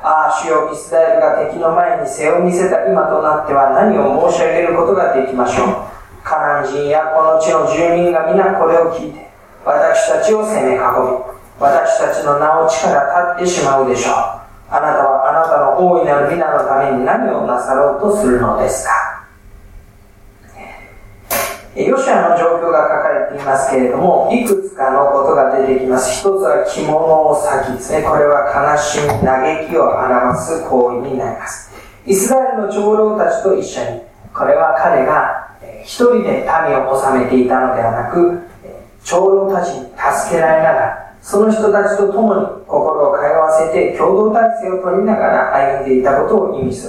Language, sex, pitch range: Japanese, male, 135-190 Hz